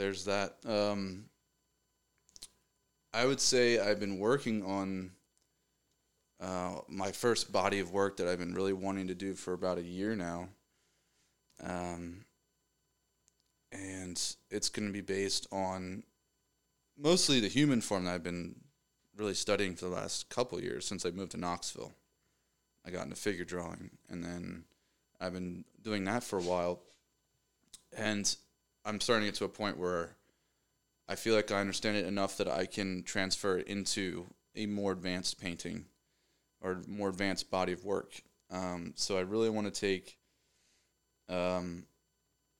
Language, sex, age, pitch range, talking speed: English, male, 20-39, 90-105 Hz, 155 wpm